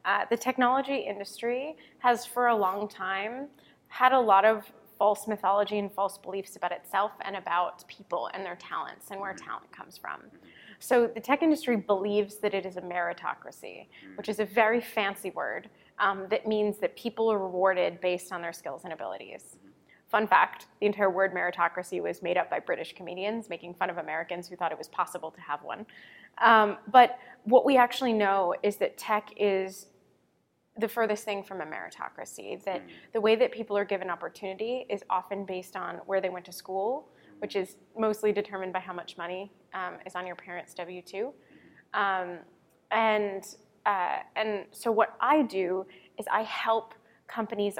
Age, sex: 20-39, female